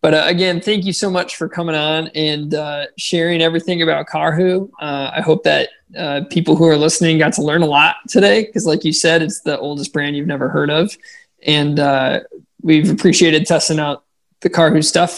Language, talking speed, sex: English, 200 wpm, male